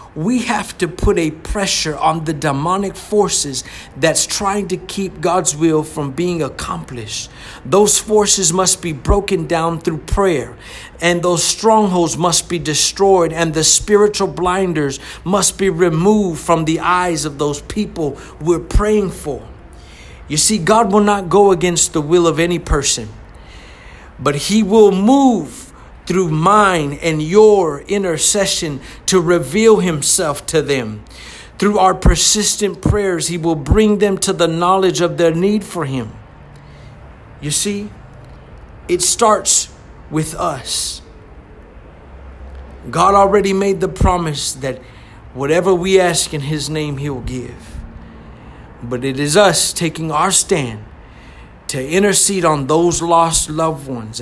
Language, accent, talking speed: English, American, 140 wpm